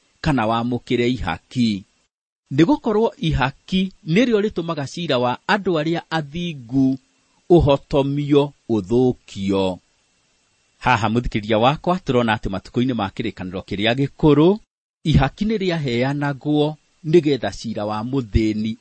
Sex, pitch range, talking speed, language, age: male, 110-160 Hz, 110 wpm, English, 40-59